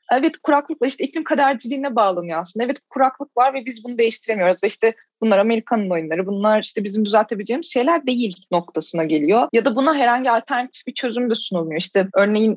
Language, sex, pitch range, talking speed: Turkish, female, 210-255 Hz, 175 wpm